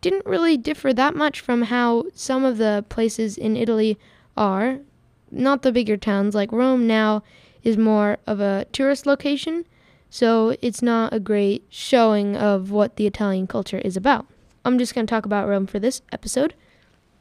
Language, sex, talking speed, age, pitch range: English, female, 175 wpm, 10-29, 220-275 Hz